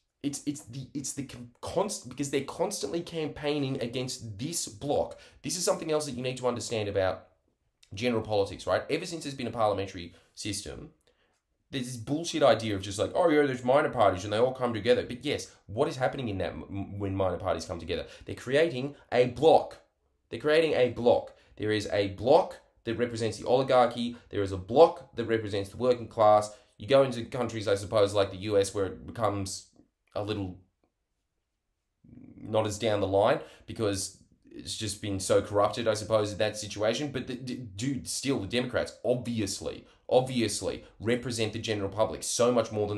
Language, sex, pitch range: English, male, 100-130 Hz